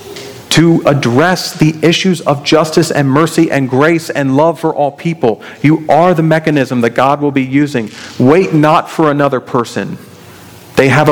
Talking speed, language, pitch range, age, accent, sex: 165 wpm, English, 120-155 Hz, 40-59, American, male